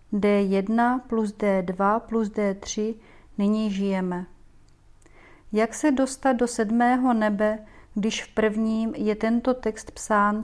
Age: 40-59